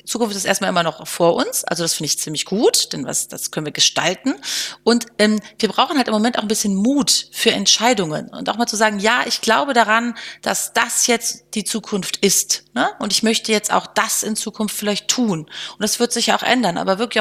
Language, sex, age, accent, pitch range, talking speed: German, female, 30-49, German, 195-235 Hz, 230 wpm